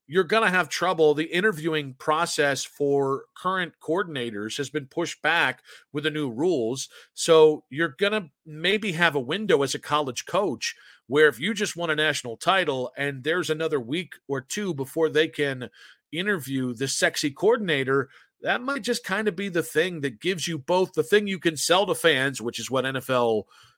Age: 40-59